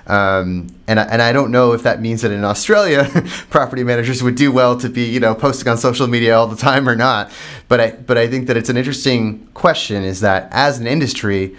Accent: American